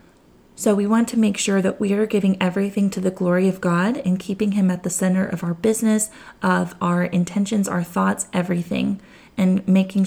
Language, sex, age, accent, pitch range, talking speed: English, female, 20-39, American, 185-215 Hz, 195 wpm